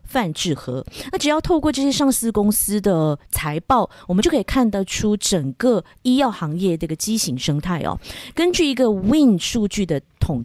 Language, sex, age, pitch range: Chinese, female, 20-39, 160-235 Hz